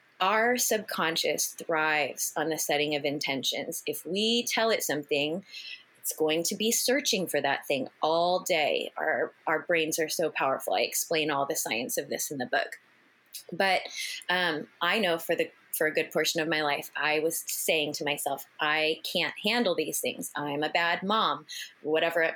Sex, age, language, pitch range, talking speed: female, 20-39, English, 155-220 Hz, 185 wpm